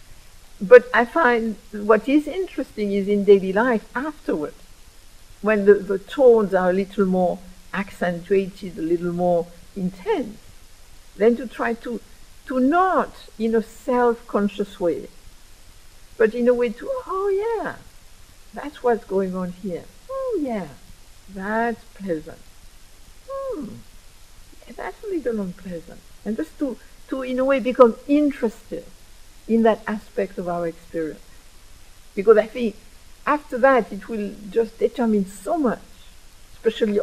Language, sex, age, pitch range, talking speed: English, female, 60-79, 170-235 Hz, 135 wpm